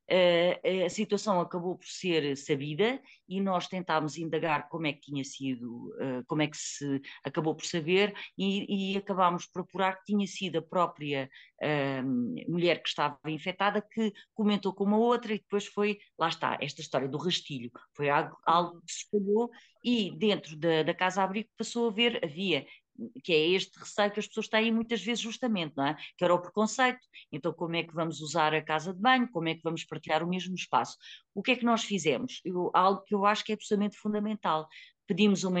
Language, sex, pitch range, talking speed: Portuguese, female, 150-200 Hz, 200 wpm